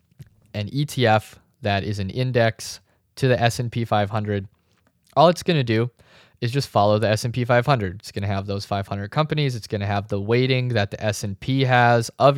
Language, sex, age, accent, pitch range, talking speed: English, male, 20-39, American, 105-125 Hz, 190 wpm